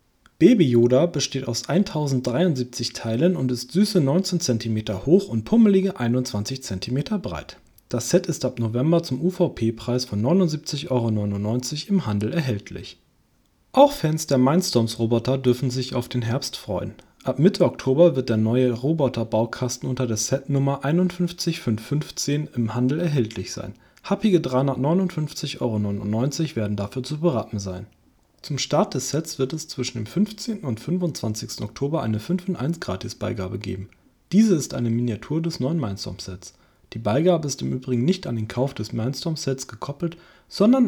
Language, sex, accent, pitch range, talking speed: German, male, German, 115-165 Hz, 150 wpm